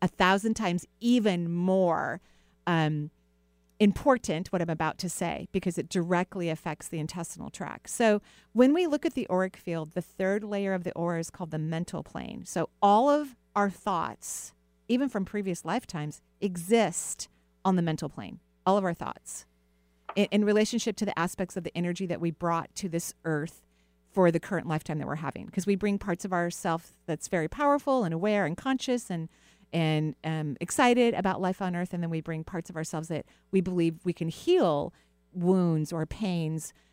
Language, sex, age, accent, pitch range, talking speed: English, female, 40-59, American, 160-200 Hz, 185 wpm